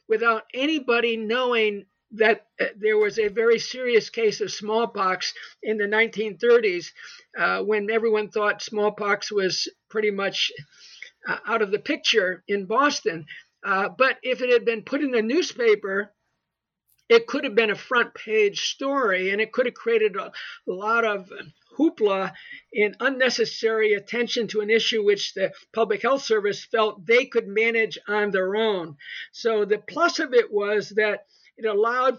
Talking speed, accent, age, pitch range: 160 wpm, American, 50-69, 205-265 Hz